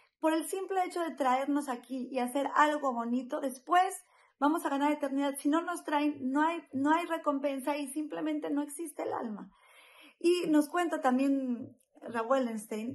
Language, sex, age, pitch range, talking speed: Spanish, female, 30-49, 255-320 Hz, 170 wpm